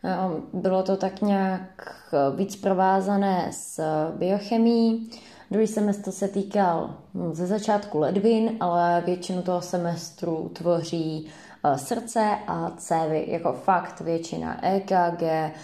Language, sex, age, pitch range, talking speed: Czech, female, 20-39, 160-180 Hz, 105 wpm